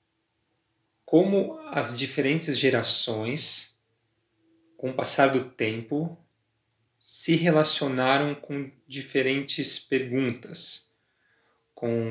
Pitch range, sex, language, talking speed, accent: 115-140 Hz, male, Portuguese, 75 wpm, Brazilian